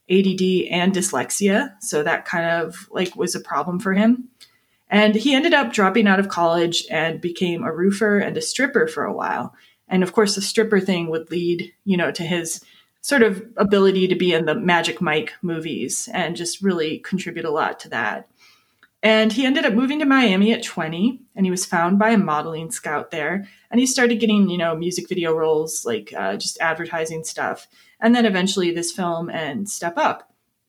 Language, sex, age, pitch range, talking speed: English, female, 20-39, 170-215 Hz, 200 wpm